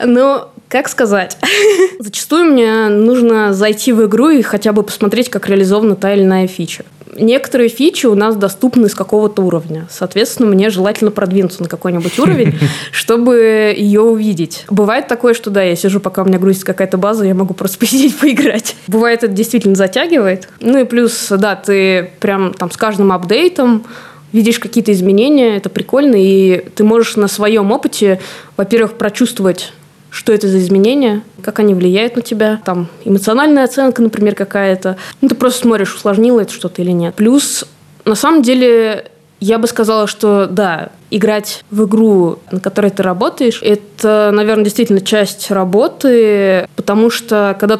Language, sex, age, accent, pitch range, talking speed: Russian, female, 20-39, native, 190-230 Hz, 160 wpm